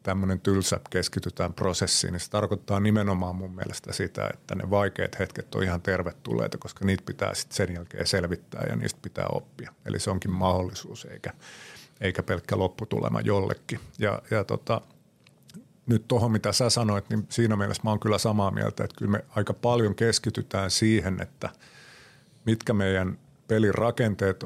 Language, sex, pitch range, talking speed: Finnish, male, 95-110 Hz, 160 wpm